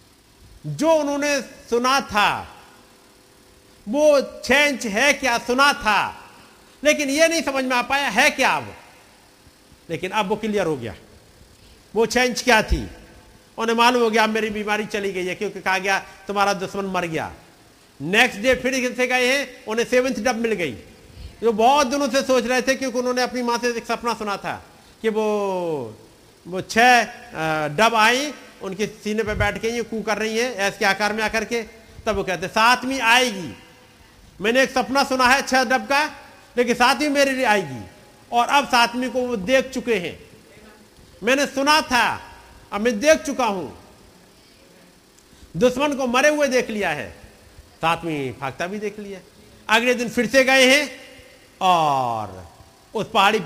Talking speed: 160 wpm